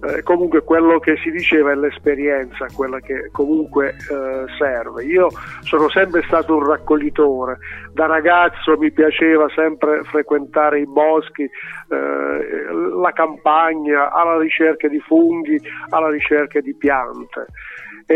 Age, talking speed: 50-69, 130 wpm